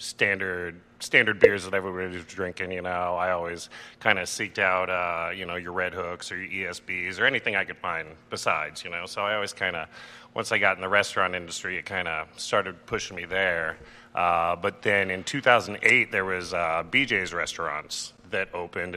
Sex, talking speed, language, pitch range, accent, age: male, 200 wpm, English, 90-105 Hz, American, 30-49